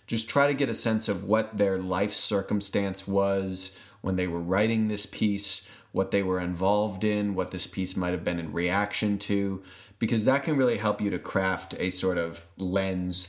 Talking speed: 200 wpm